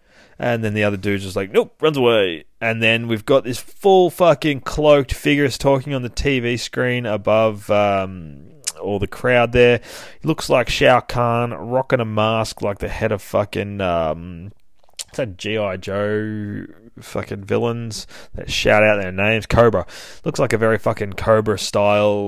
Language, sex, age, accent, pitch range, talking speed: English, male, 20-39, Australian, 105-125 Hz, 165 wpm